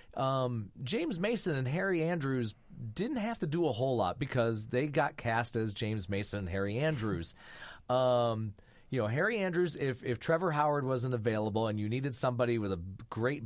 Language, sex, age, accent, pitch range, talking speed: English, male, 30-49, American, 110-155 Hz, 185 wpm